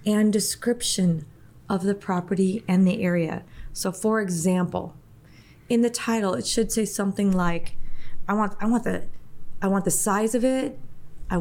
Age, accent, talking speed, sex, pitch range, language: 30-49, American, 165 wpm, female, 165-200 Hz, English